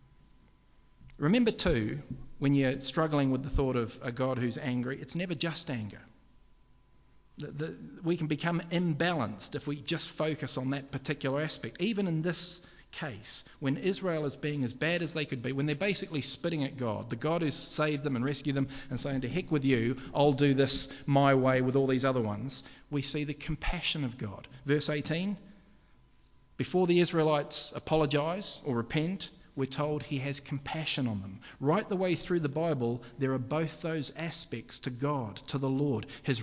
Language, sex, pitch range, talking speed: English, male, 135-165 Hz, 185 wpm